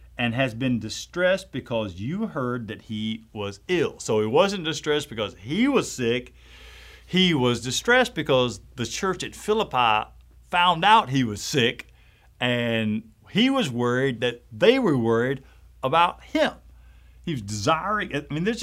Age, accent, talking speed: 50-69, American, 155 wpm